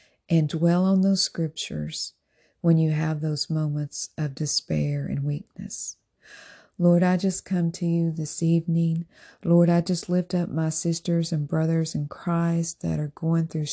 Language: English